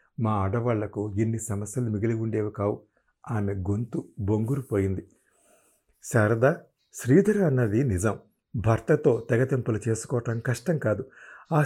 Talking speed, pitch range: 110 wpm, 110-145 Hz